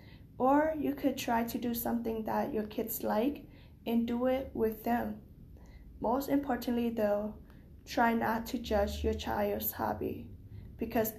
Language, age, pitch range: English, 10-29, 215-245 Hz